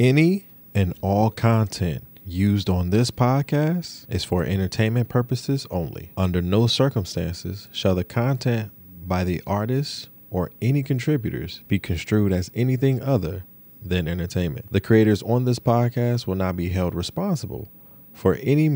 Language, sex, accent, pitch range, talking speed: English, male, American, 90-130 Hz, 140 wpm